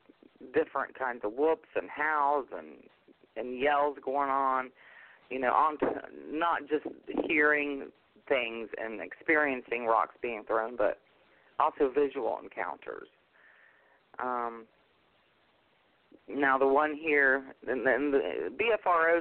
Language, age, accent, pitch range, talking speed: English, 40-59, American, 125-150 Hz, 110 wpm